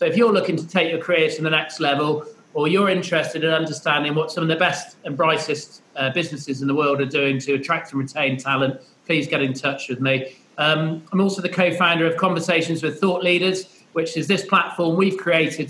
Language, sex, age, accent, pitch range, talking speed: English, male, 40-59, British, 155-185 Hz, 220 wpm